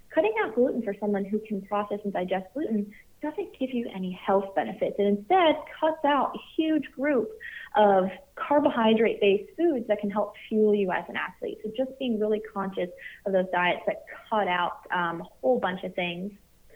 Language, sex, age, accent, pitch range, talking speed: English, female, 30-49, American, 190-245 Hz, 185 wpm